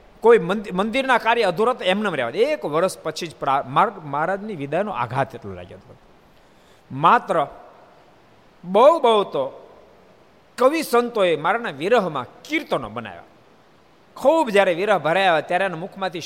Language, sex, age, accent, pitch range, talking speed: Gujarati, male, 50-69, native, 150-200 Hz, 120 wpm